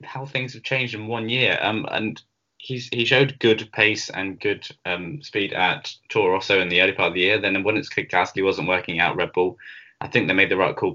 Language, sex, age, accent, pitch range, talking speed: English, male, 10-29, British, 95-130 Hz, 240 wpm